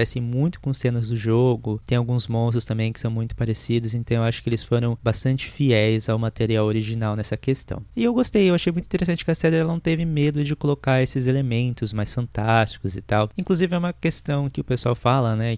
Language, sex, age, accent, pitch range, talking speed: Portuguese, male, 20-39, Brazilian, 115-140 Hz, 220 wpm